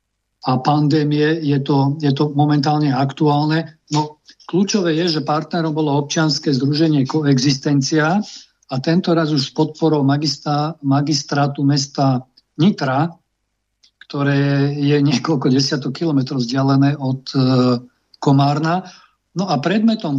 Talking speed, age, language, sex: 115 wpm, 50-69, Slovak, male